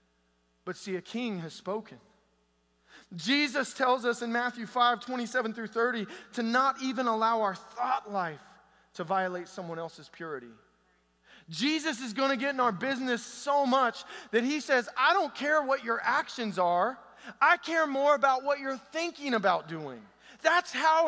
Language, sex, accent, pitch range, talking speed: English, male, American, 185-260 Hz, 165 wpm